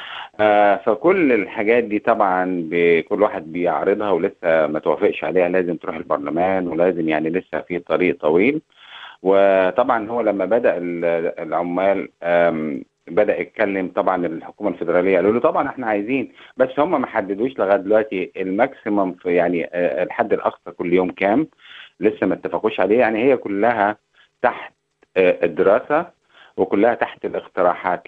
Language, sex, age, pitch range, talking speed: Arabic, male, 50-69, 85-110 Hz, 135 wpm